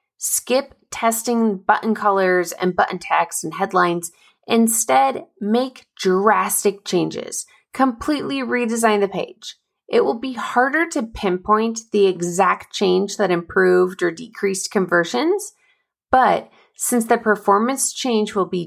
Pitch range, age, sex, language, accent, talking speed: 190-250 Hz, 20-39, female, English, American, 120 wpm